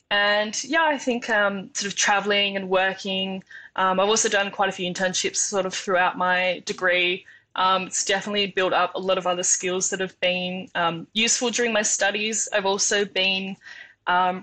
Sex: female